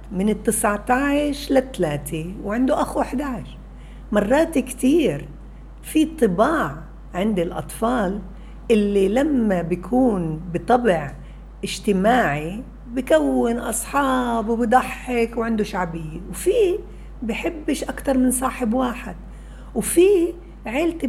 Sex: female